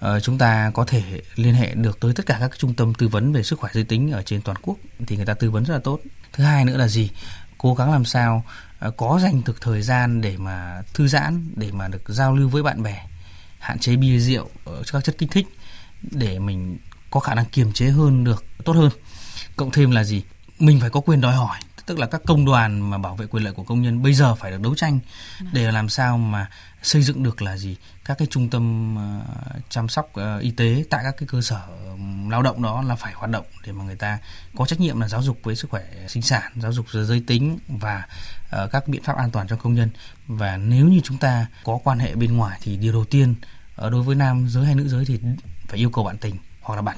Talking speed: 255 wpm